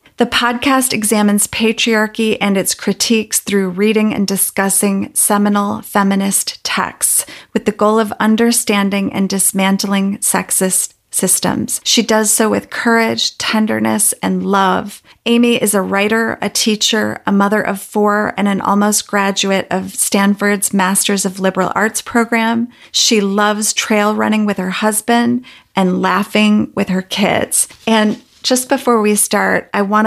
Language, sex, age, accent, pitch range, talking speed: English, female, 30-49, American, 195-220 Hz, 140 wpm